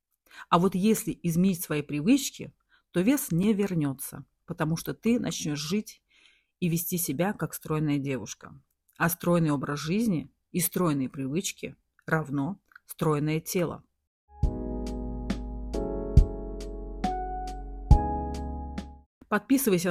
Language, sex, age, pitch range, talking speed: Russian, female, 40-59, 150-195 Hz, 95 wpm